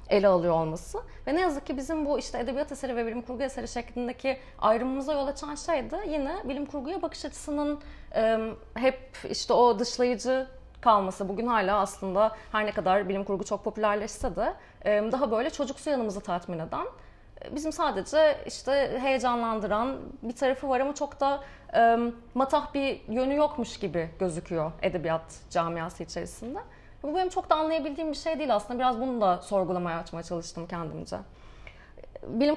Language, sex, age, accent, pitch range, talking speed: Turkish, female, 30-49, native, 205-280 Hz, 155 wpm